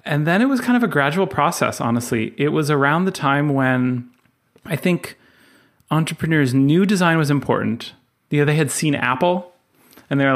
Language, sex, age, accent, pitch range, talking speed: English, male, 30-49, American, 115-150 Hz, 175 wpm